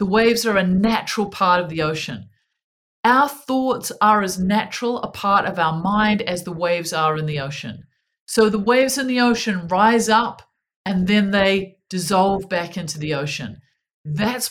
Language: English